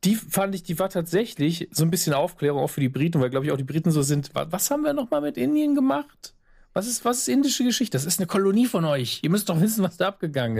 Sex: male